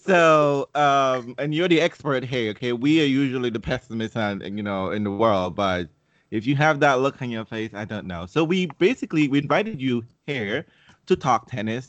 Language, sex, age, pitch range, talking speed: English, male, 30-49, 95-130 Hz, 200 wpm